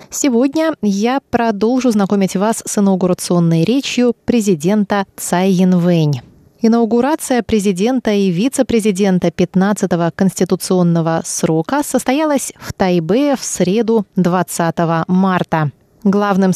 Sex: female